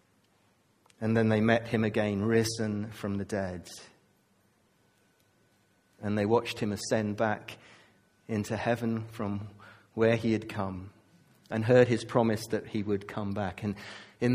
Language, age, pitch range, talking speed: English, 40-59, 105-120 Hz, 140 wpm